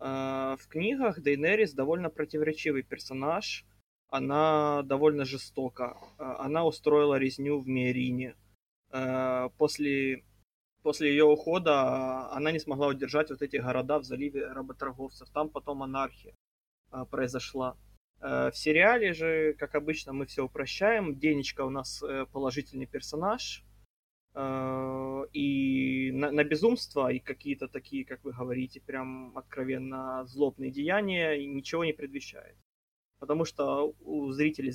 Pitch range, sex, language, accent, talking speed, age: 130-155 Hz, male, Russian, native, 115 wpm, 20-39